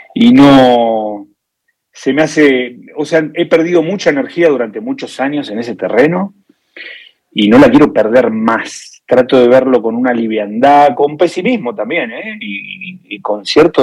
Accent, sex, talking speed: Argentinian, male, 155 wpm